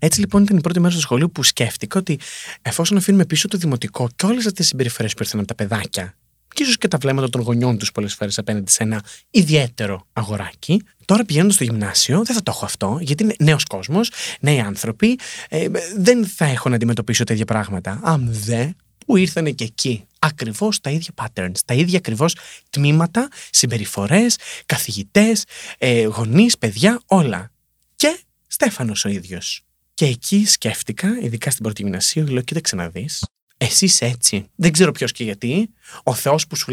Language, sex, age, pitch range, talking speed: Greek, male, 30-49, 115-165 Hz, 175 wpm